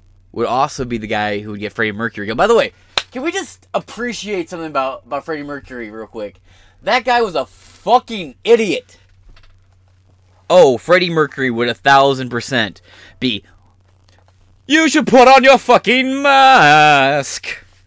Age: 20-39